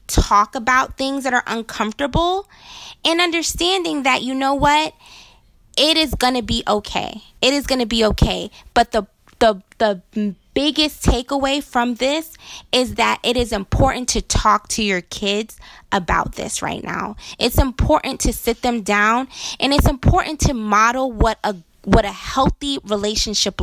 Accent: American